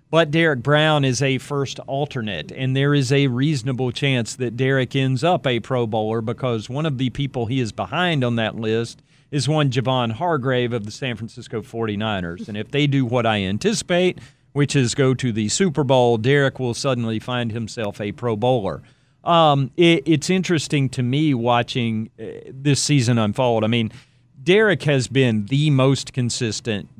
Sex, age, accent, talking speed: male, 40-59, American, 180 wpm